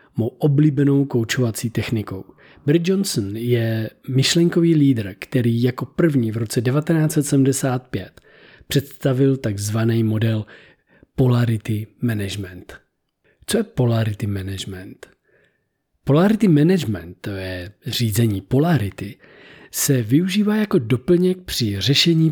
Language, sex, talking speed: Czech, male, 95 wpm